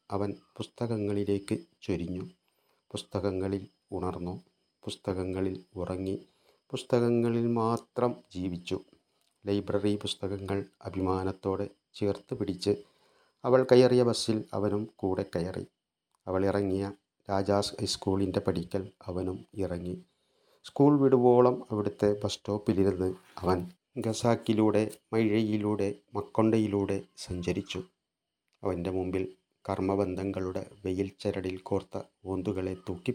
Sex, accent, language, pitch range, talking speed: male, Indian, English, 95-110 Hz, 90 wpm